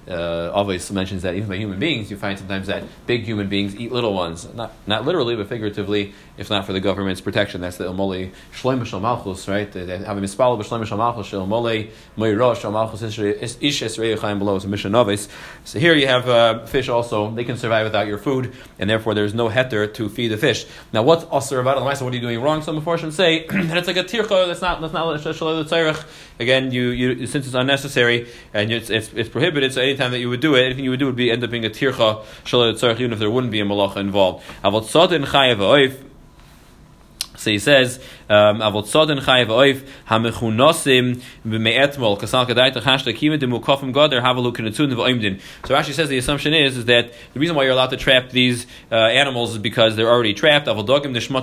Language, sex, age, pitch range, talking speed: English, male, 30-49, 110-140 Hz, 180 wpm